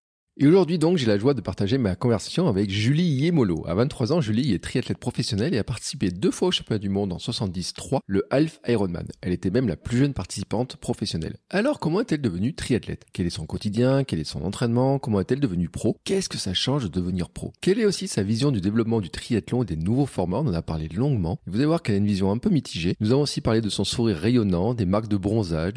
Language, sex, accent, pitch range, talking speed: French, male, French, 95-135 Hz, 245 wpm